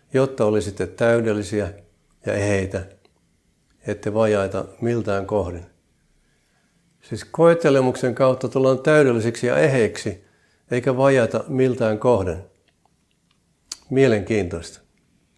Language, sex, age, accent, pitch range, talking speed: Finnish, male, 60-79, native, 100-125 Hz, 80 wpm